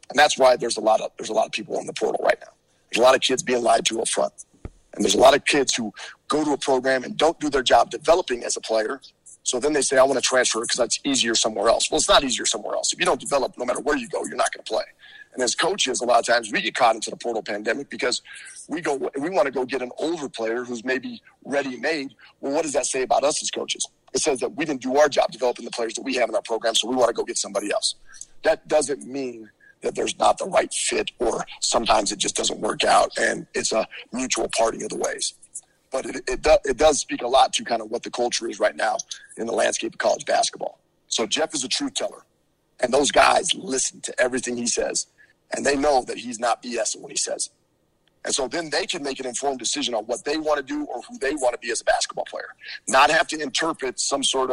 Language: English